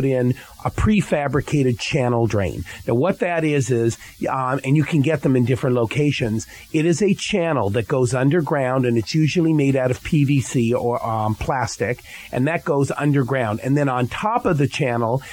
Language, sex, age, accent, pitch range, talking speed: English, male, 40-59, American, 125-155 Hz, 185 wpm